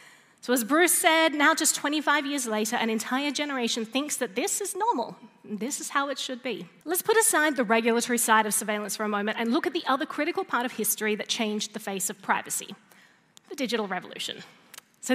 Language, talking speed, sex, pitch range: English, 215 wpm, female, 220-290 Hz